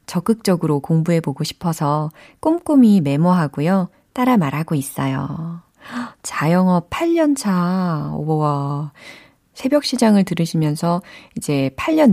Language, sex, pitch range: Korean, female, 155-235 Hz